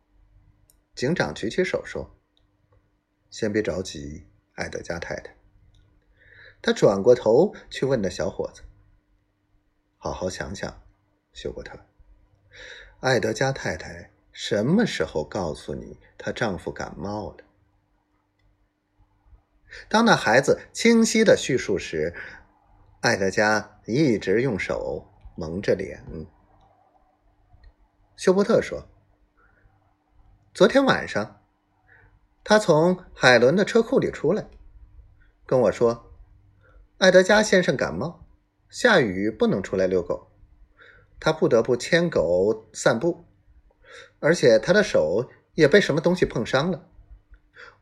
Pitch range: 100-130 Hz